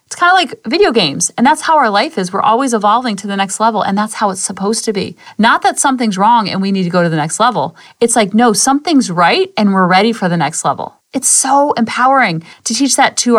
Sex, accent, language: female, American, English